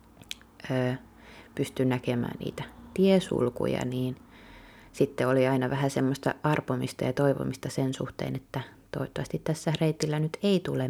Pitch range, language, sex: 100-150 Hz, Finnish, female